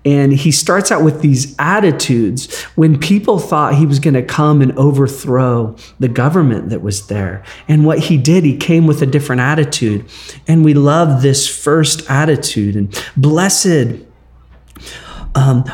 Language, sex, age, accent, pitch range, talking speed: English, male, 40-59, American, 125-155 Hz, 155 wpm